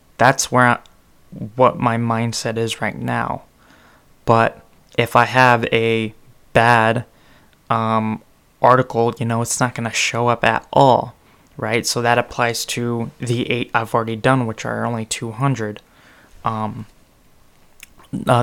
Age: 20-39